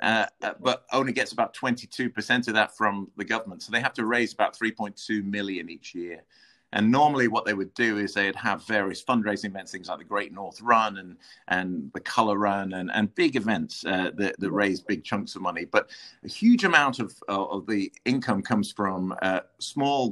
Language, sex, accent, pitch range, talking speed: English, male, British, 95-110 Hz, 205 wpm